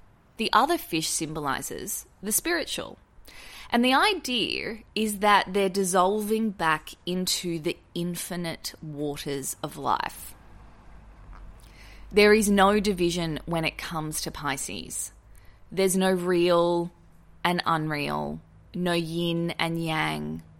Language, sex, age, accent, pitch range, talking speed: English, female, 20-39, Australian, 140-185 Hz, 110 wpm